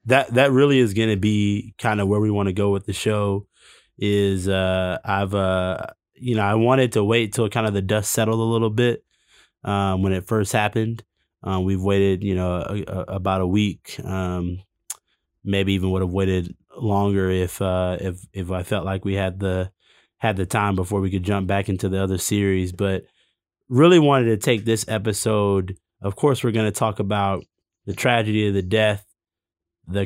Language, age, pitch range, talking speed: English, 20-39, 95-110 Hz, 200 wpm